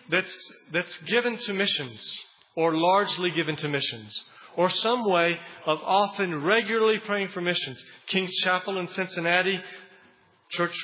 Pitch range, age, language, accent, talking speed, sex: 145-180 Hz, 40-59, English, American, 135 wpm, male